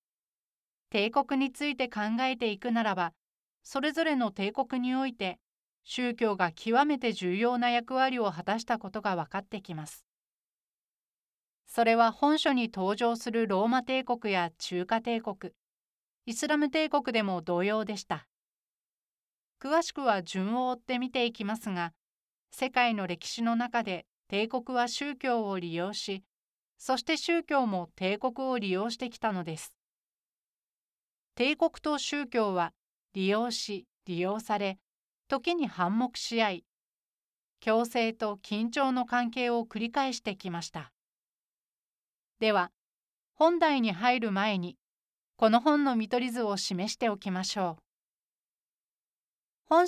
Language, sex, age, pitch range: Japanese, female, 40-59, 200-255 Hz